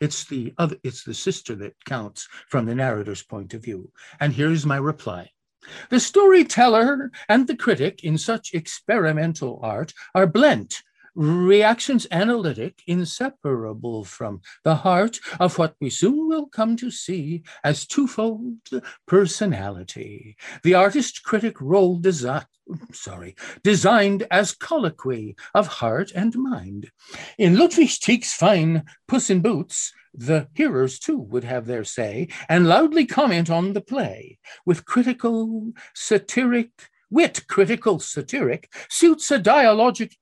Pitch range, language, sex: 135-220 Hz, English, male